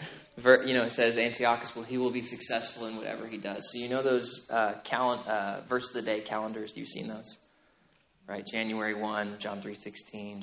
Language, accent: English, American